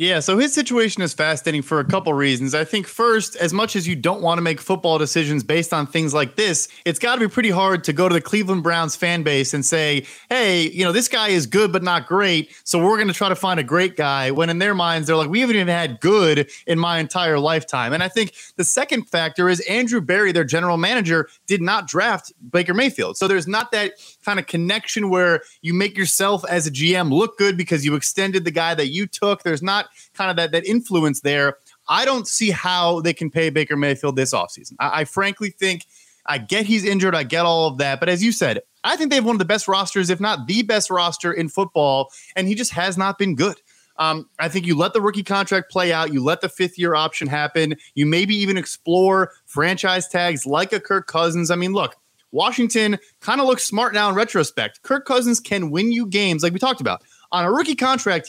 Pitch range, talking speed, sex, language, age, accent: 160-205 Hz, 235 wpm, male, English, 30-49, American